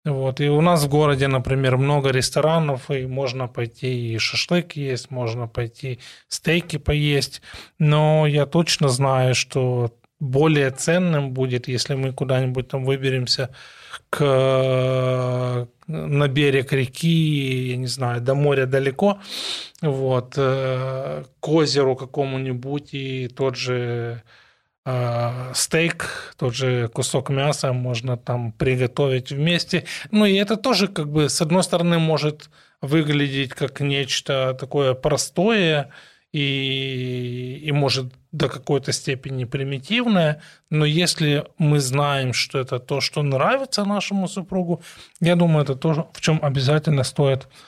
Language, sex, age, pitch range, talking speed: Russian, male, 20-39, 130-155 Hz, 125 wpm